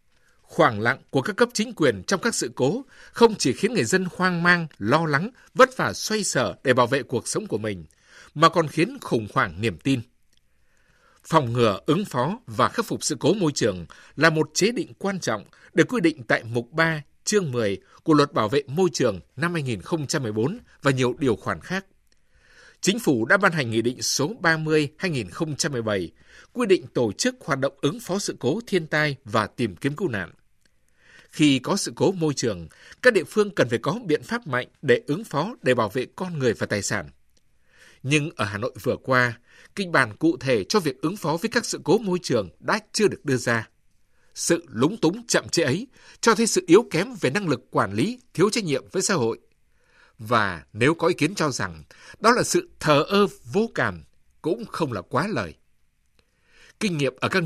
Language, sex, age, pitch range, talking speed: Vietnamese, male, 60-79, 120-190 Hz, 205 wpm